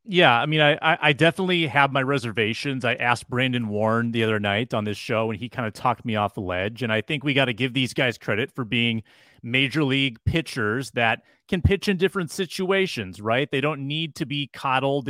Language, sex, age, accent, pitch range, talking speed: English, male, 30-49, American, 120-165 Hz, 225 wpm